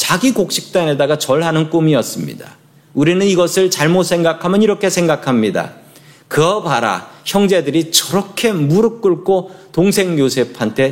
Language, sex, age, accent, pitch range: Korean, male, 40-59, native, 145-190 Hz